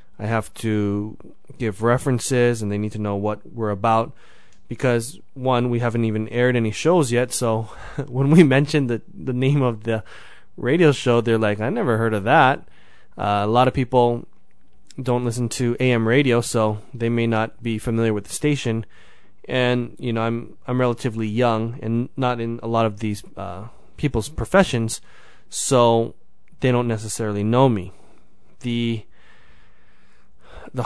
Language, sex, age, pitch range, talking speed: English, male, 20-39, 110-130 Hz, 165 wpm